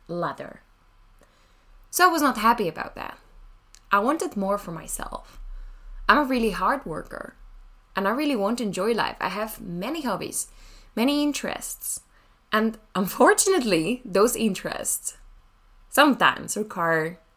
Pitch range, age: 170-235 Hz, 10-29